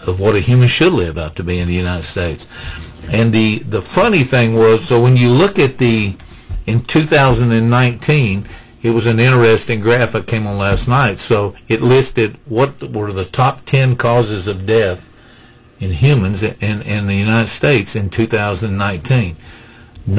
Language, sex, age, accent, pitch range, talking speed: English, male, 50-69, American, 95-120 Hz, 170 wpm